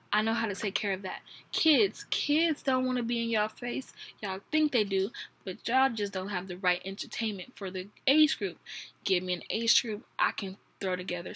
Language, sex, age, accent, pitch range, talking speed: English, female, 10-29, American, 195-250 Hz, 220 wpm